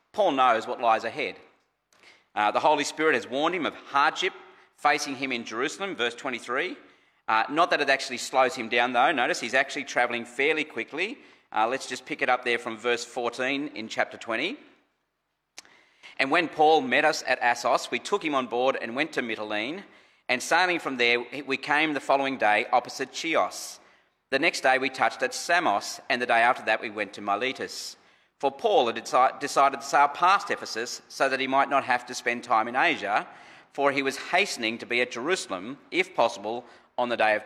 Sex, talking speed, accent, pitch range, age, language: male, 200 wpm, Australian, 120-145 Hz, 40-59, English